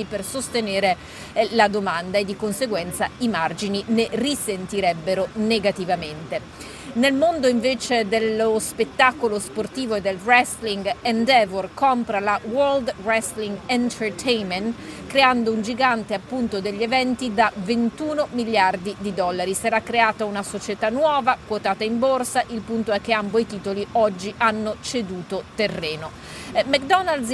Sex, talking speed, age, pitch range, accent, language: female, 125 wpm, 40-59, 210-255 Hz, native, Italian